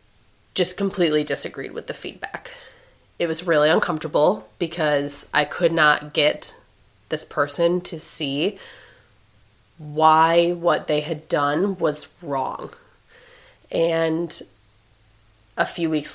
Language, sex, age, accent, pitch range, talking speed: English, female, 20-39, American, 145-175 Hz, 110 wpm